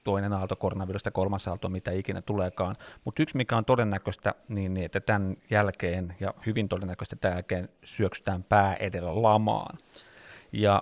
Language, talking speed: Finnish, 150 wpm